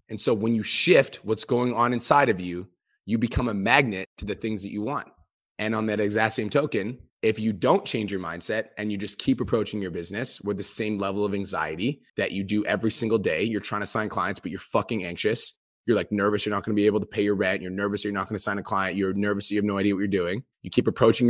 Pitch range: 100-120 Hz